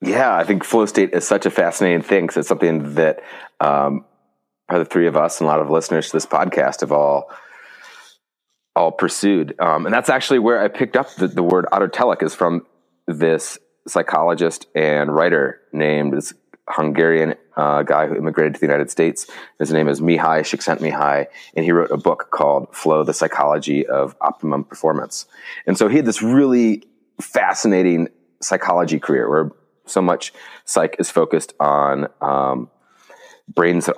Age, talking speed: 30-49, 170 wpm